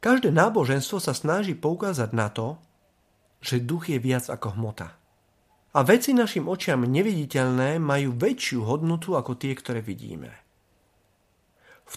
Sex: male